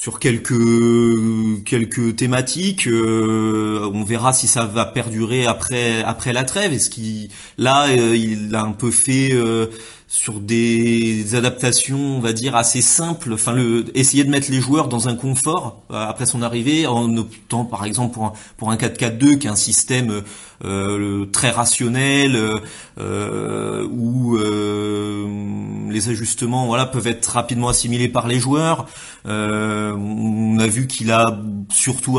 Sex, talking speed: male, 155 wpm